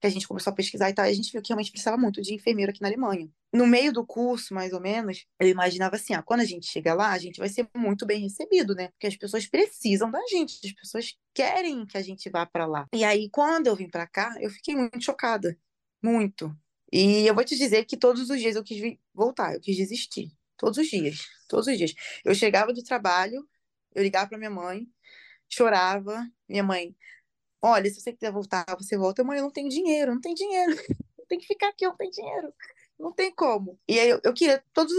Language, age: Portuguese, 20-39